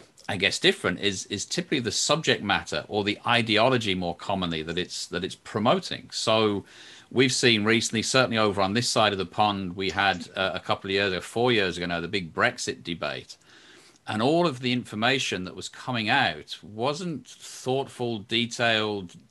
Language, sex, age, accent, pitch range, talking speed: English, male, 40-59, British, 100-125 Hz, 185 wpm